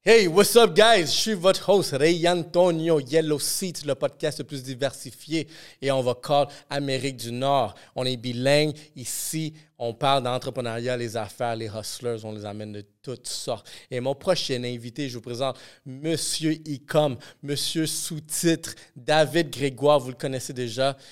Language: French